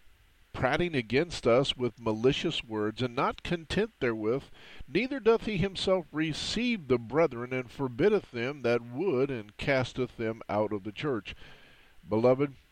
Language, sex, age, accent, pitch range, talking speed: English, male, 50-69, American, 105-145 Hz, 140 wpm